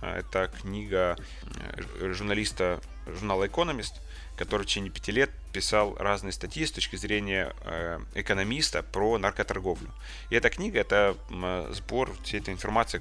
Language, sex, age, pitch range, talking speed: Ukrainian, male, 20-39, 90-105 Hz, 130 wpm